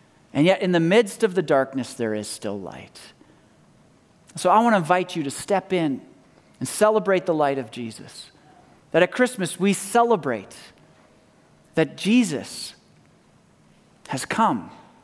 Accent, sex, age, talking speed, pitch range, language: American, male, 40-59, 145 wpm, 135-180 Hz, English